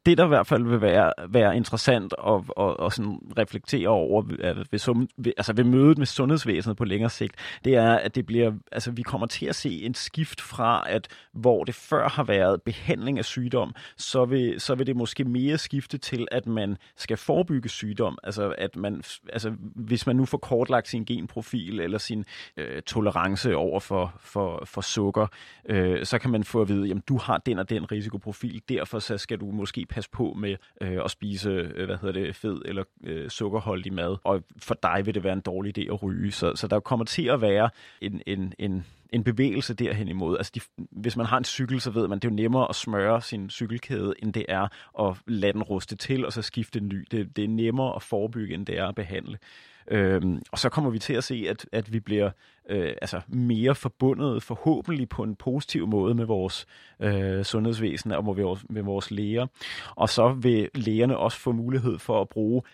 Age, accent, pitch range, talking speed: 30-49, native, 100-125 Hz, 210 wpm